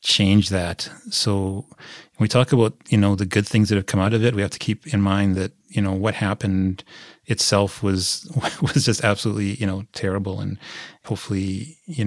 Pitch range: 100-115 Hz